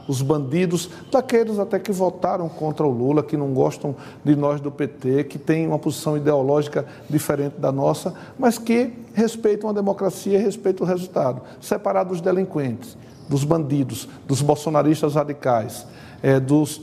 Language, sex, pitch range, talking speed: Portuguese, male, 140-160 Hz, 150 wpm